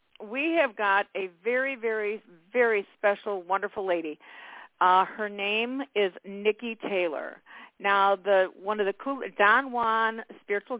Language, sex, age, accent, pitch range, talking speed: English, female, 50-69, American, 180-225 Hz, 140 wpm